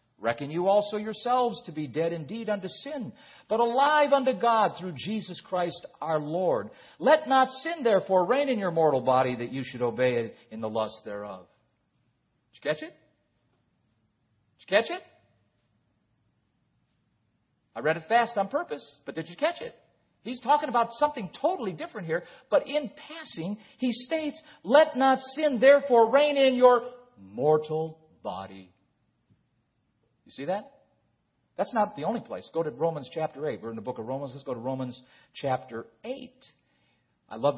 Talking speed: 165 wpm